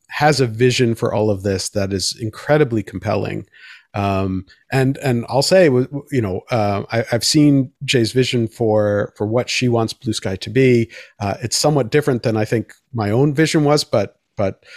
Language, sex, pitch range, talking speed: English, male, 110-135 Hz, 185 wpm